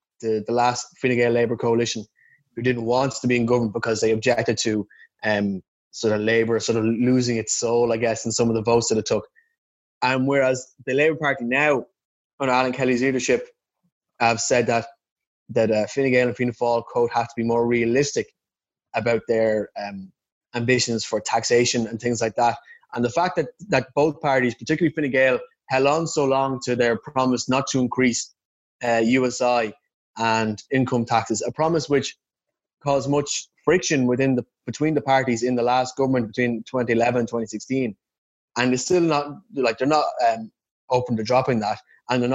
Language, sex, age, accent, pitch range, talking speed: English, male, 20-39, Irish, 115-135 Hz, 185 wpm